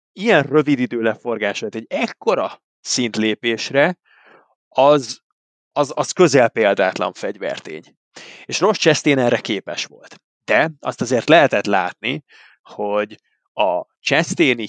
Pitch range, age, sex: 110-140 Hz, 30-49, male